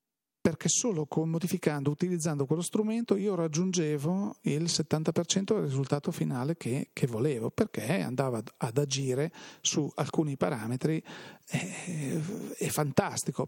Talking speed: 115 wpm